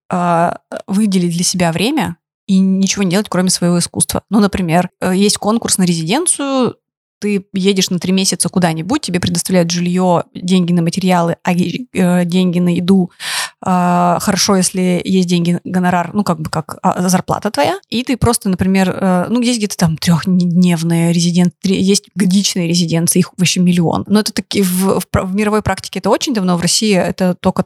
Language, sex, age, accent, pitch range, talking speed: Russian, female, 20-39, native, 180-215 Hz, 155 wpm